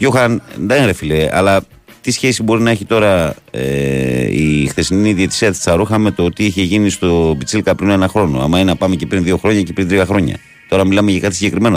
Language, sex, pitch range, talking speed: Greek, male, 80-95 Hz, 215 wpm